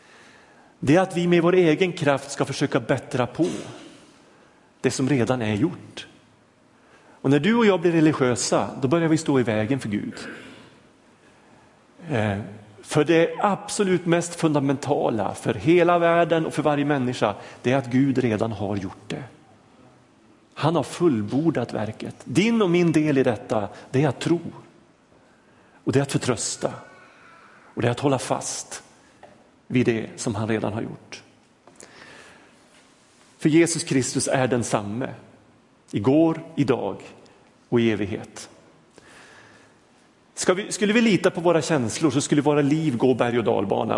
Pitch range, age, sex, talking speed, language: 120-160 Hz, 40-59, male, 150 wpm, Swedish